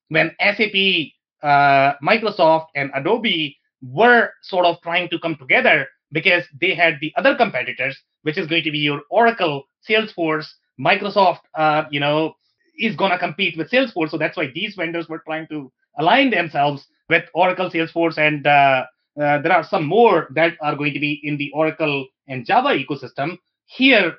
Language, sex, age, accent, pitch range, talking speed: English, male, 30-49, Indian, 150-200 Hz, 170 wpm